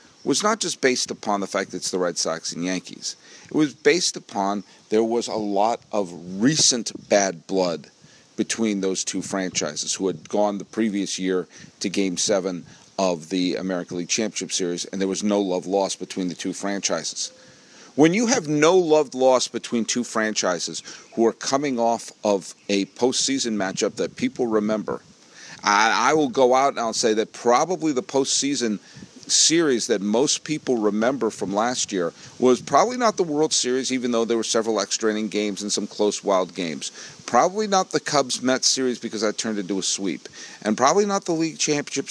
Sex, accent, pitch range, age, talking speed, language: male, American, 95-130 Hz, 40-59, 190 wpm, English